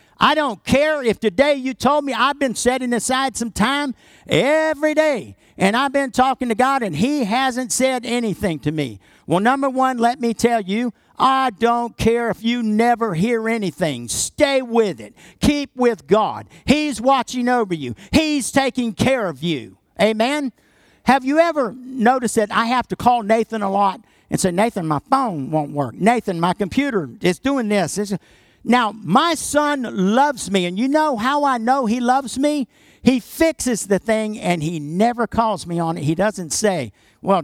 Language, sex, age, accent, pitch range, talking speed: English, male, 50-69, American, 195-270 Hz, 185 wpm